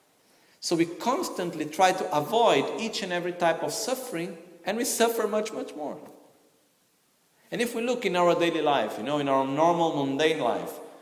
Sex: male